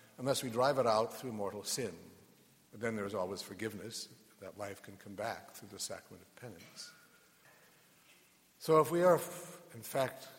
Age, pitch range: 60-79, 105-130 Hz